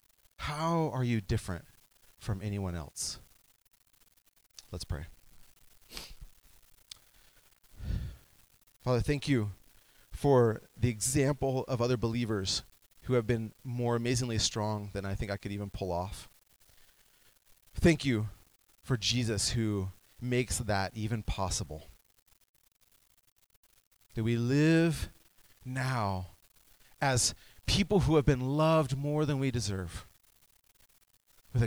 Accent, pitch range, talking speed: American, 100-130 Hz, 105 wpm